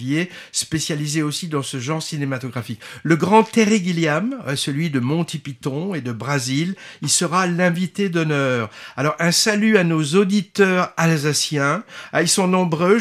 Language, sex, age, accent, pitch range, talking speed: French, male, 60-79, French, 145-195 Hz, 145 wpm